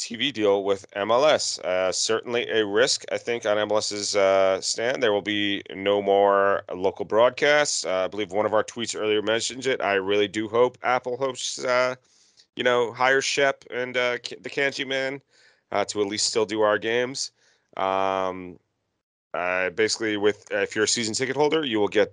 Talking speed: 185 wpm